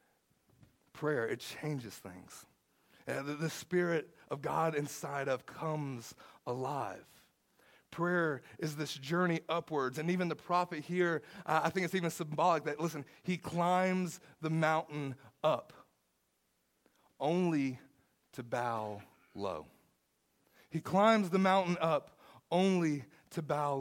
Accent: American